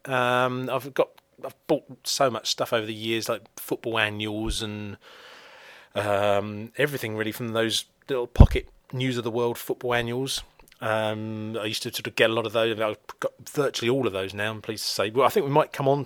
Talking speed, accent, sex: 215 wpm, British, male